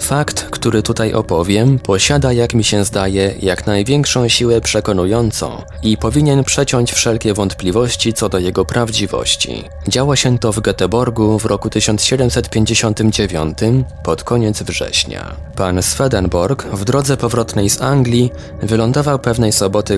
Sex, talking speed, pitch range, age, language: male, 130 wpm, 95-120 Hz, 20-39, Polish